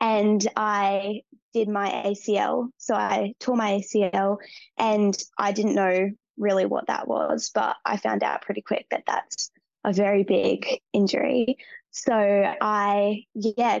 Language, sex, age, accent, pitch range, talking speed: English, female, 10-29, Australian, 195-220 Hz, 145 wpm